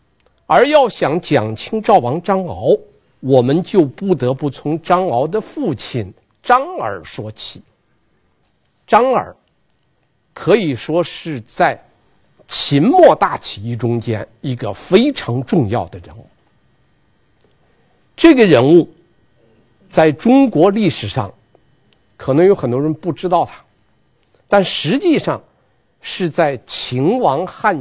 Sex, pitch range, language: male, 120-170 Hz, Chinese